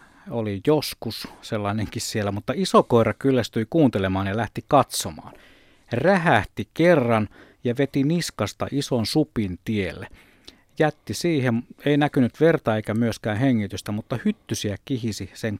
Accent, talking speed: native, 125 wpm